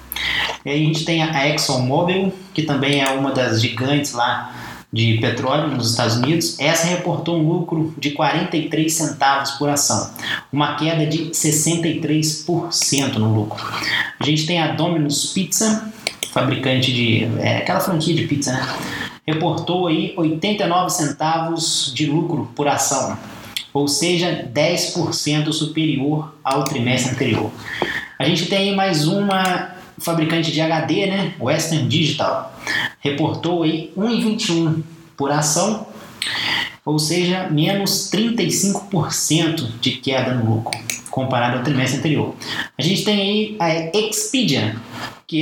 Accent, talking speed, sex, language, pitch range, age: Brazilian, 130 wpm, male, English, 140-175 Hz, 20-39